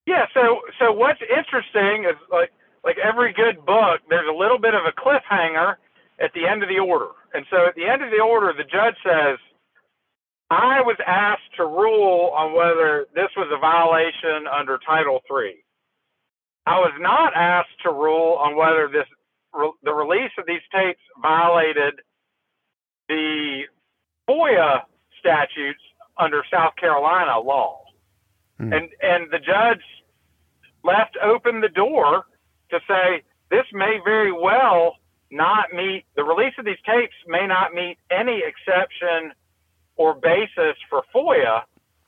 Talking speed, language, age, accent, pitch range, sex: 145 wpm, English, 50-69, American, 155-220 Hz, male